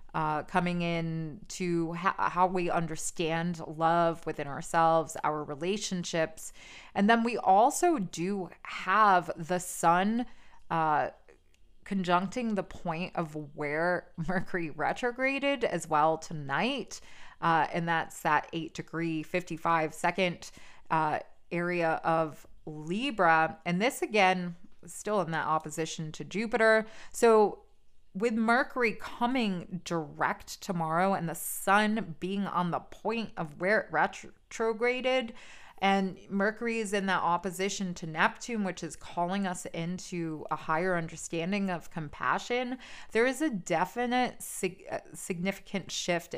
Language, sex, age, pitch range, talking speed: English, female, 20-39, 165-200 Hz, 125 wpm